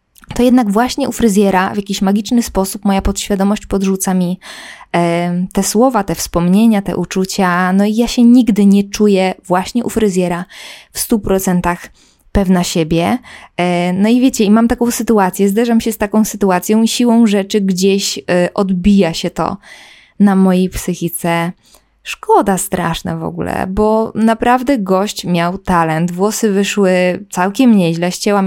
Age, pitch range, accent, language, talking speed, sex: 20-39, 180-215 Hz, native, Polish, 150 wpm, female